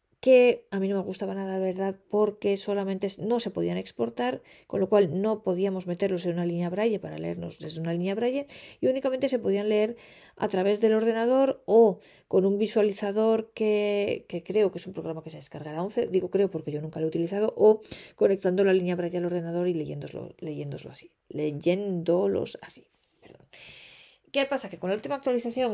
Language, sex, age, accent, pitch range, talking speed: Spanish, female, 40-59, Spanish, 185-245 Hz, 200 wpm